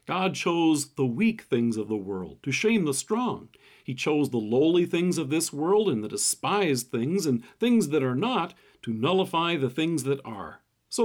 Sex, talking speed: male, 195 wpm